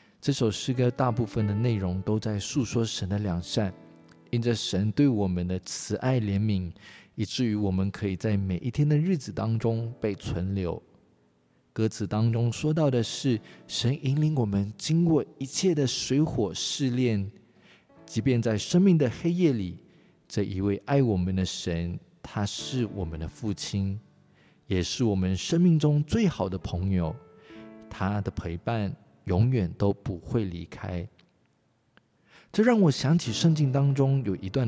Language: Chinese